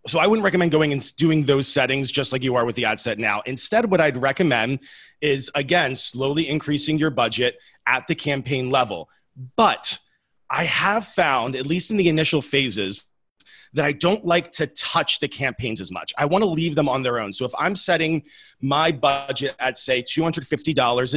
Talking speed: 195 wpm